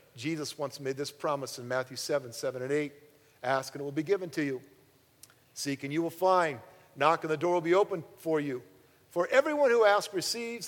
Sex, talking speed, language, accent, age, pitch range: male, 215 wpm, English, American, 50-69, 130-170 Hz